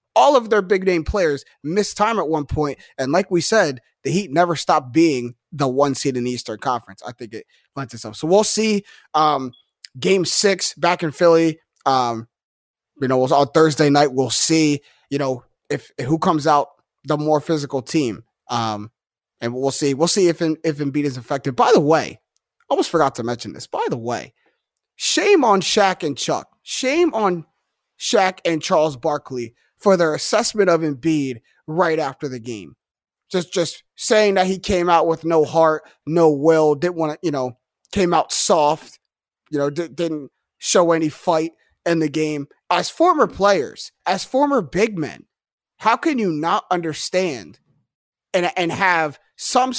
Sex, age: male, 30-49